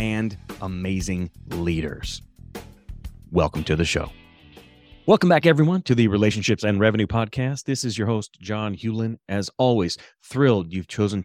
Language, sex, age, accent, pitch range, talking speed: English, male, 30-49, American, 95-125 Hz, 145 wpm